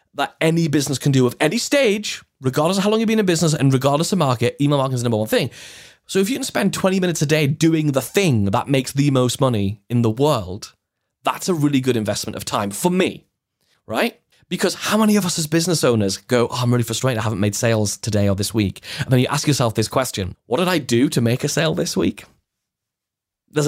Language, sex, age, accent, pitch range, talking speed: English, male, 20-39, British, 120-170 Hz, 240 wpm